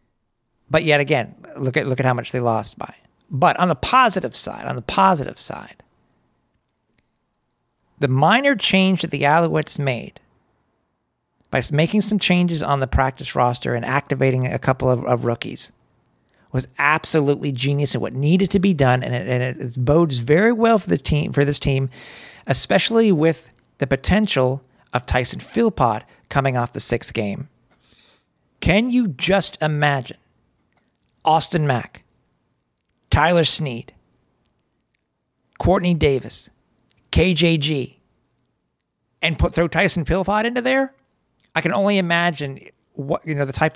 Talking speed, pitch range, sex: 145 wpm, 125-165 Hz, male